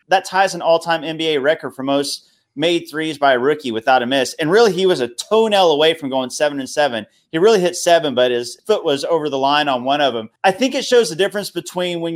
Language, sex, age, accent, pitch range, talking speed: English, male, 30-49, American, 135-170 Hz, 250 wpm